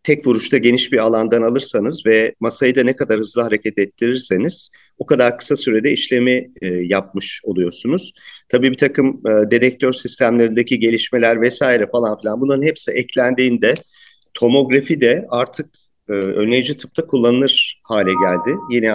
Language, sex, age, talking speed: Turkish, male, 50-69, 135 wpm